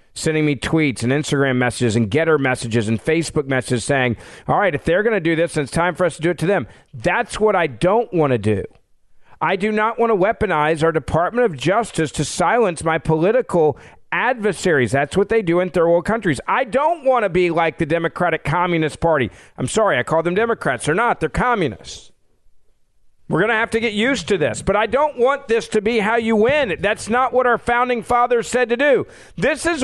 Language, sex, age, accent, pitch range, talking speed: English, male, 50-69, American, 155-235 Hz, 225 wpm